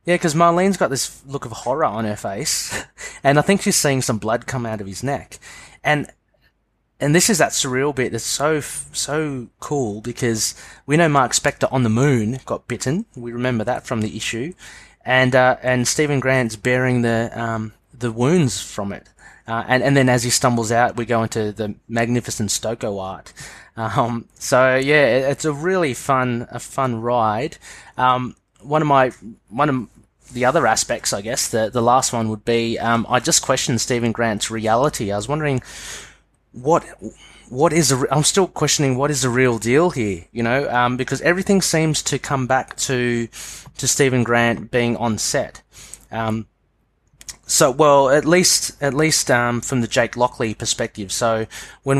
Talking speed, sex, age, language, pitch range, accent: 185 wpm, male, 20-39, English, 115-140 Hz, Australian